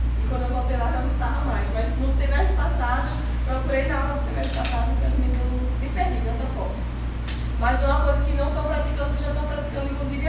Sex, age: female, 10-29